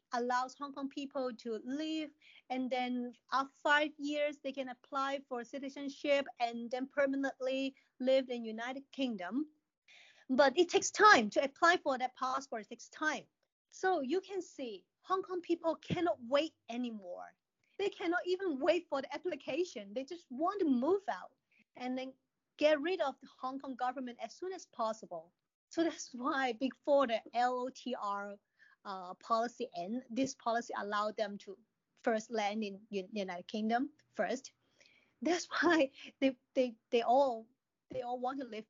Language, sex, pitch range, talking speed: English, female, 225-290 Hz, 160 wpm